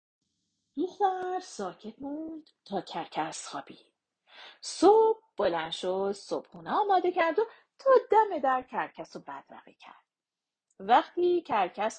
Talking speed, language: 110 wpm, Persian